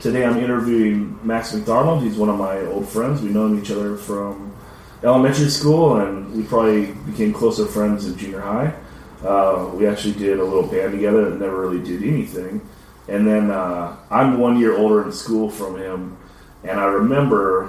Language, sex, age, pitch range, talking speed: English, male, 30-49, 95-110 Hz, 185 wpm